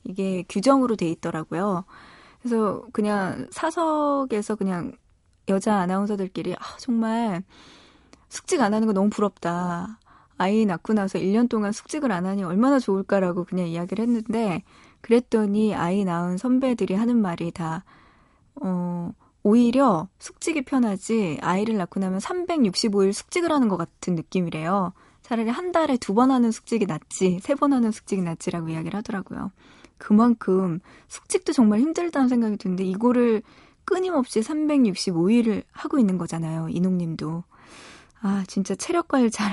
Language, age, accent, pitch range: Korean, 20-39, native, 185-245 Hz